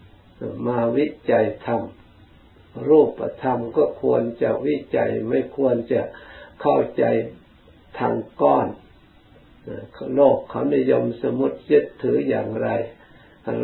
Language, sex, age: Thai, male, 60-79